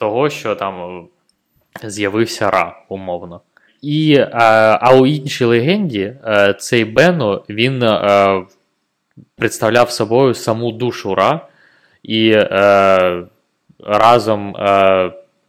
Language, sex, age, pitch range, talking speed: Ukrainian, male, 20-39, 95-115 Hz, 95 wpm